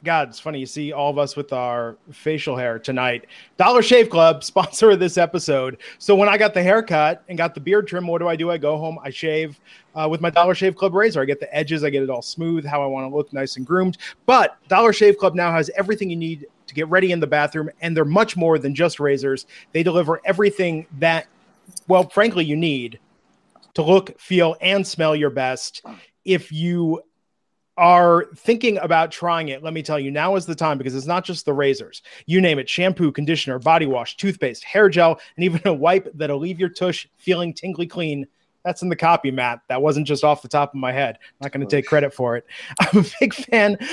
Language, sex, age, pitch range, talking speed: English, male, 30-49, 145-185 Hz, 230 wpm